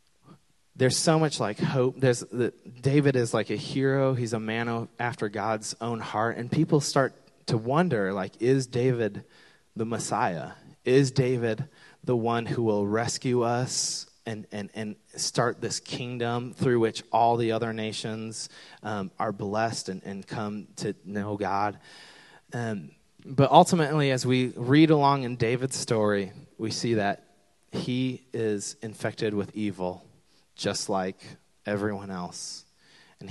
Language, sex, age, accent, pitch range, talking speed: English, male, 30-49, American, 110-135 Hz, 150 wpm